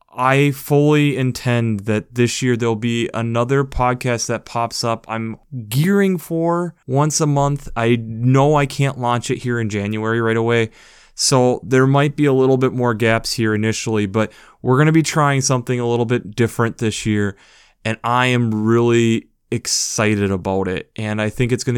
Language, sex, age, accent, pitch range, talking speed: English, male, 20-39, American, 110-130 Hz, 180 wpm